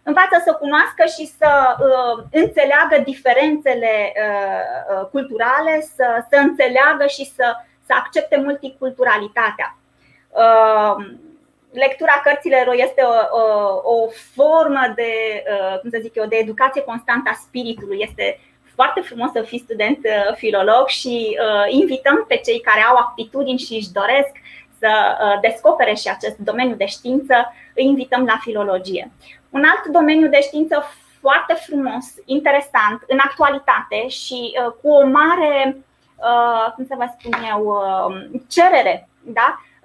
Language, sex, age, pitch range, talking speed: Romanian, female, 20-39, 230-290 Hz, 135 wpm